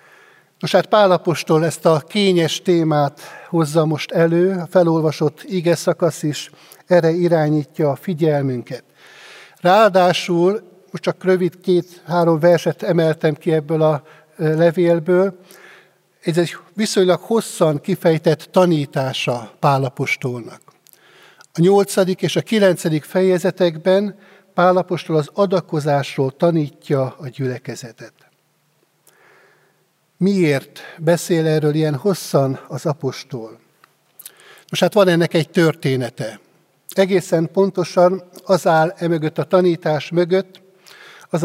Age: 60-79